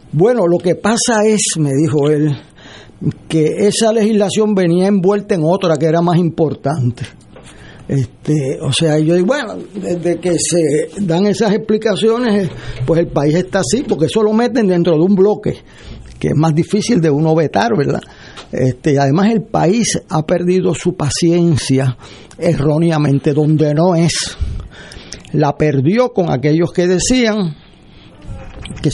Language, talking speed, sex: Spanish, 145 wpm, male